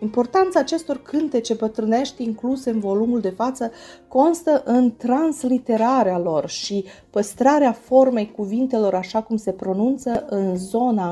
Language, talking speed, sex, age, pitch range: Romanian, 125 wpm, female, 30-49, 190-255 Hz